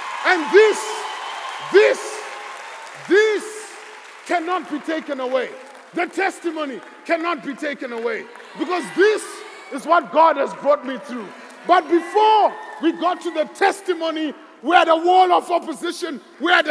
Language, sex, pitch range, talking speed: English, male, 310-380 Hz, 135 wpm